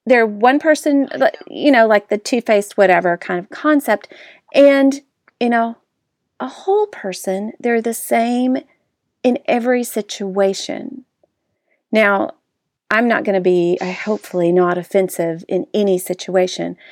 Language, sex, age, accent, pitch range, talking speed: English, female, 40-59, American, 180-250 Hz, 130 wpm